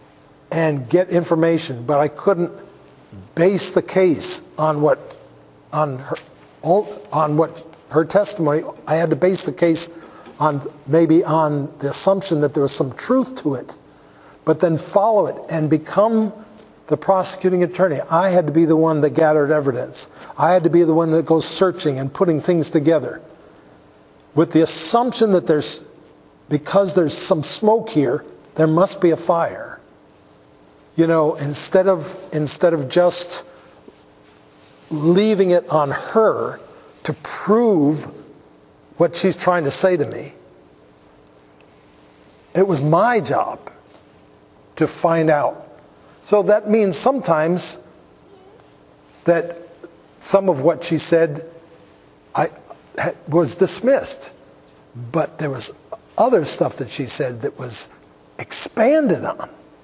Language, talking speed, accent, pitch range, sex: English, 135 wpm, American, 145-180 Hz, male